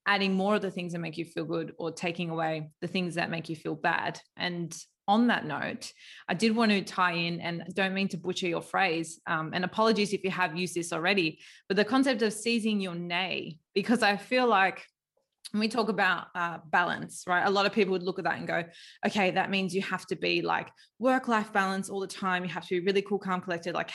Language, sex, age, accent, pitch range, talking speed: English, female, 20-39, Australian, 170-205 Hz, 240 wpm